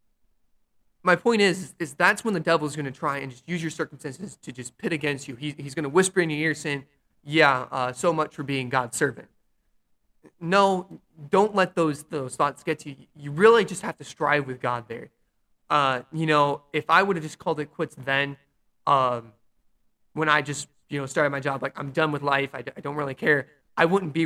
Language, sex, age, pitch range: English, male, 20-39, 130-165 Hz